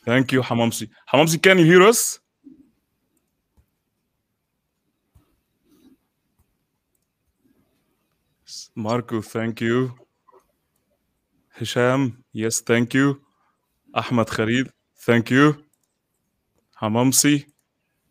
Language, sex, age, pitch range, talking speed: English, male, 20-39, 120-155 Hz, 65 wpm